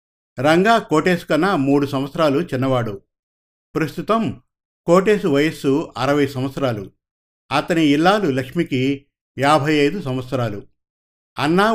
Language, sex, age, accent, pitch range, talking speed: Telugu, male, 50-69, native, 130-165 Hz, 85 wpm